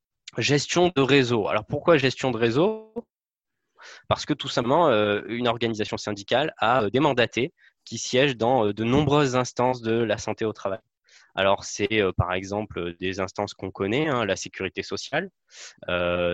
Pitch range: 100-125 Hz